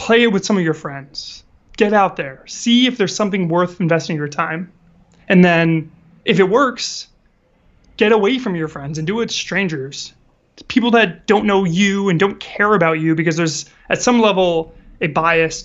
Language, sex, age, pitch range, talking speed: English, male, 20-39, 160-195 Hz, 190 wpm